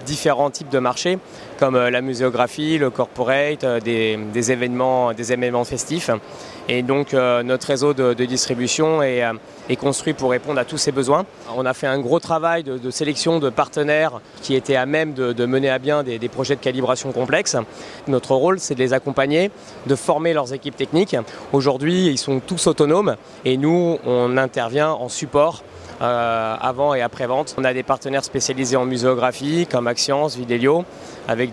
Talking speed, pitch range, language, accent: 180 wpm, 125-145 Hz, French, French